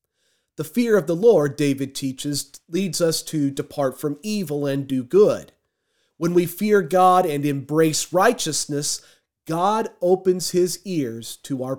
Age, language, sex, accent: 30-49, English, male, American